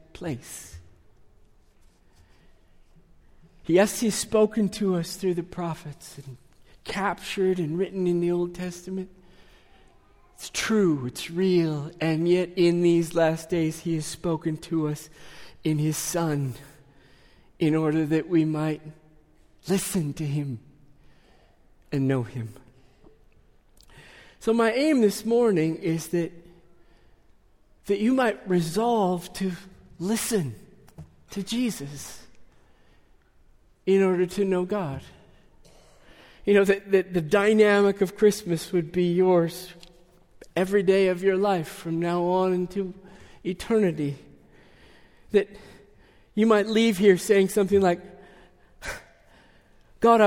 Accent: American